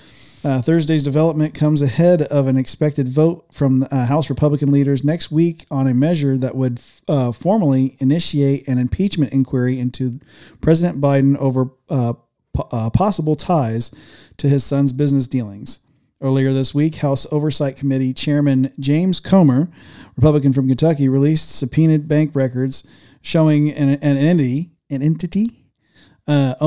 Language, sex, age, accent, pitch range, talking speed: English, male, 40-59, American, 130-155 Hz, 150 wpm